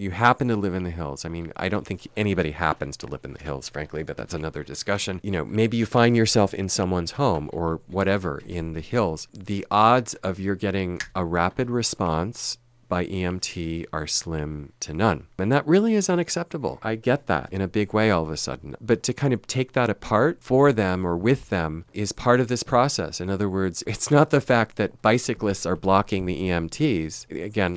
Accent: American